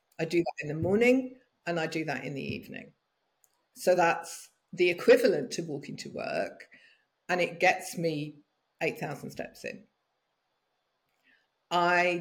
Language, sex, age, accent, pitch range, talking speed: English, female, 50-69, British, 160-190 Hz, 145 wpm